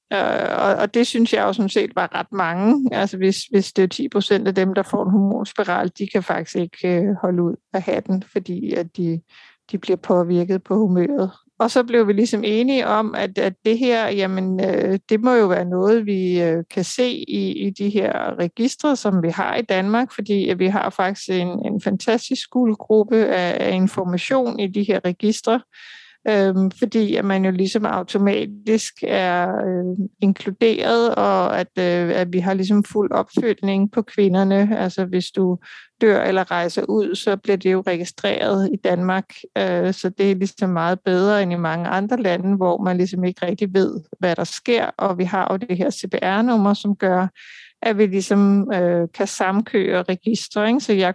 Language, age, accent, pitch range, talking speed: Danish, 60-79, native, 185-210 Hz, 185 wpm